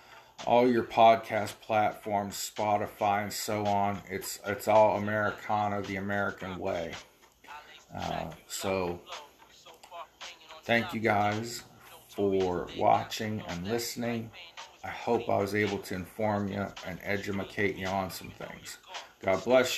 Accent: American